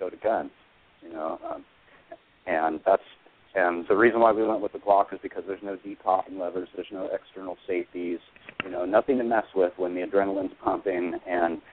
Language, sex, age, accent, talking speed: English, male, 40-59, American, 195 wpm